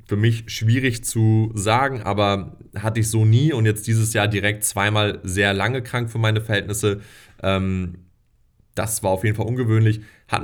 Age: 30-49